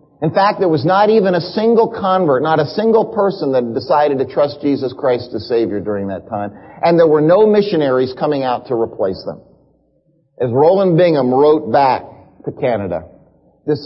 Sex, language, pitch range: male, English, 140-190 Hz